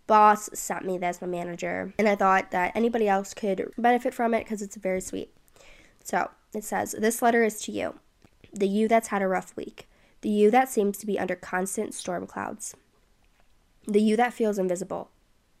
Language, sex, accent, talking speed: English, female, American, 195 wpm